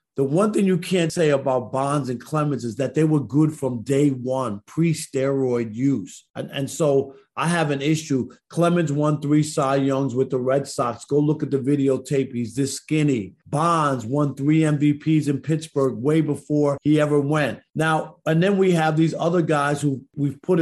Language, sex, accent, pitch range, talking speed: English, male, American, 135-160 Hz, 195 wpm